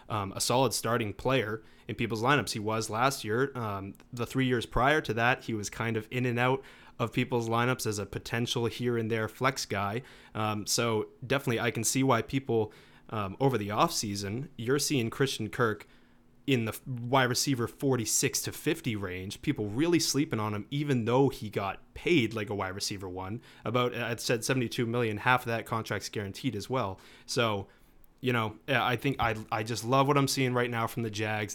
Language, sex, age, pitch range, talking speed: English, male, 30-49, 110-130 Hz, 200 wpm